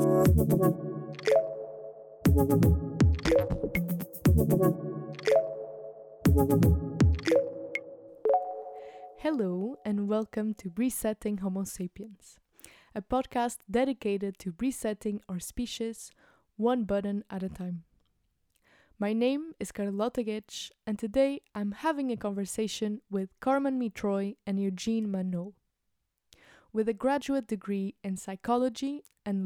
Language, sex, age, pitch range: English, female, 20-39, 195-245 Hz